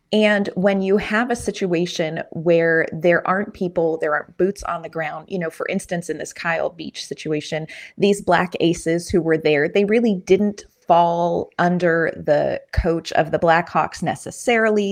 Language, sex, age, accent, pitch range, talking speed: English, female, 30-49, American, 160-195 Hz, 170 wpm